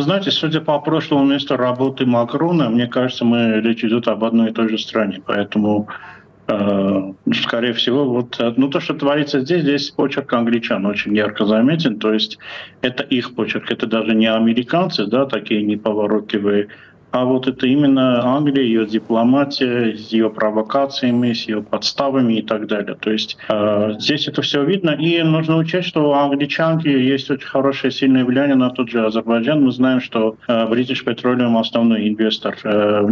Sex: male